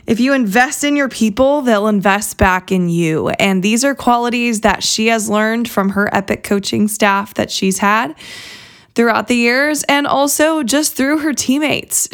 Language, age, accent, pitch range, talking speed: English, 20-39, American, 200-245 Hz, 180 wpm